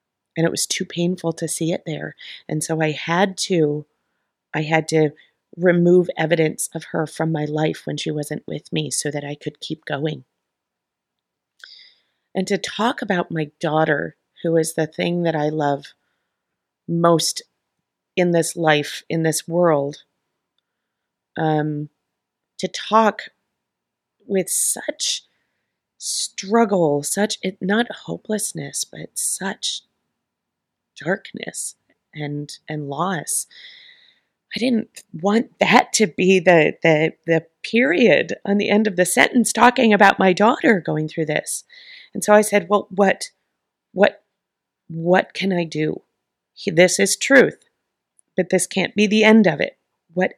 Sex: female